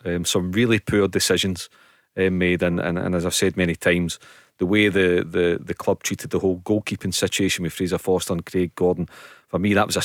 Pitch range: 95-120 Hz